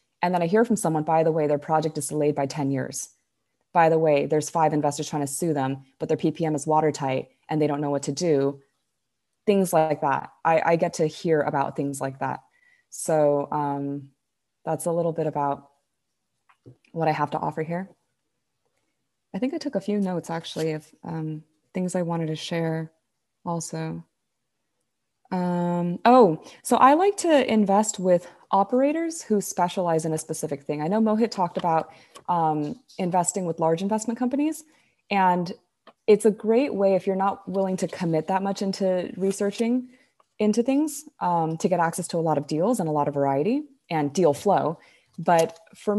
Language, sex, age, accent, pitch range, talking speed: English, female, 20-39, American, 155-195 Hz, 185 wpm